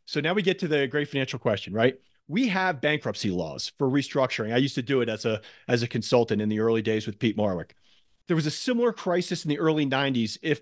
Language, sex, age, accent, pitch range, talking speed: English, male, 40-59, American, 130-170 Hz, 245 wpm